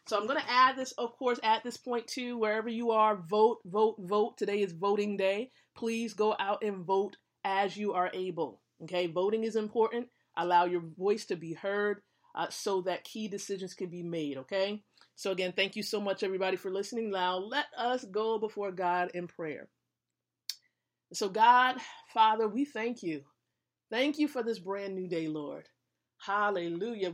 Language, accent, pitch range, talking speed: English, American, 185-235 Hz, 180 wpm